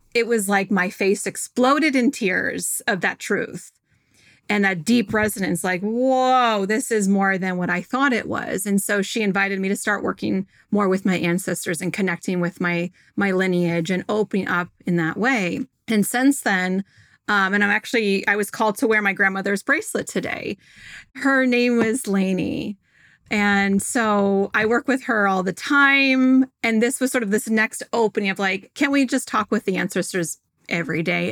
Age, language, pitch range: 30-49, English, 195-235 Hz